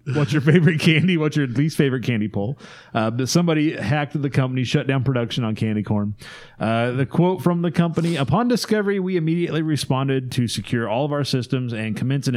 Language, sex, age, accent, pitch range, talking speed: English, male, 30-49, American, 115-160 Hz, 200 wpm